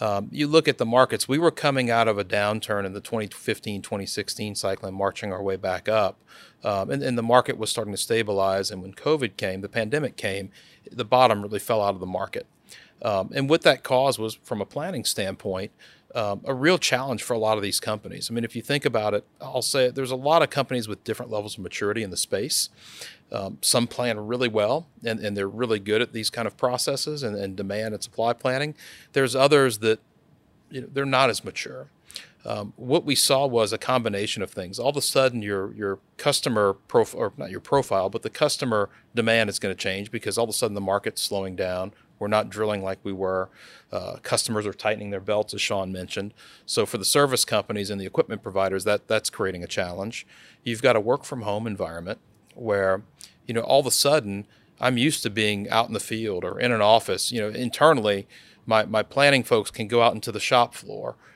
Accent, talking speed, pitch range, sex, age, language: American, 220 wpm, 100-125 Hz, male, 40-59, English